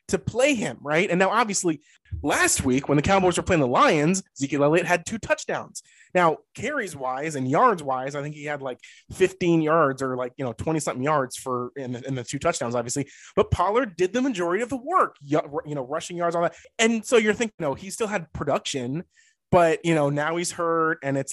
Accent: American